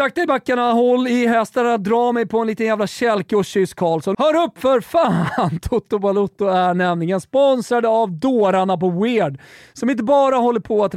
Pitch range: 155-230 Hz